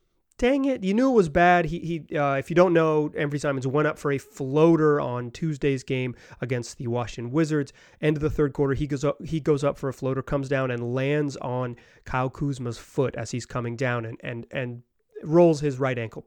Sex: male